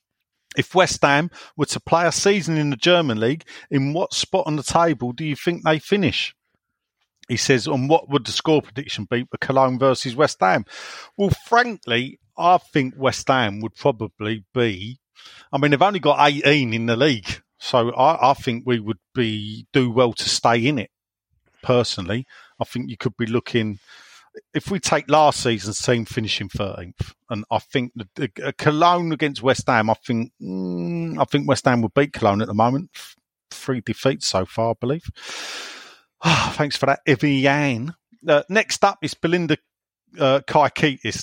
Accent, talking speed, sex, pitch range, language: British, 180 wpm, male, 115-150 Hz, English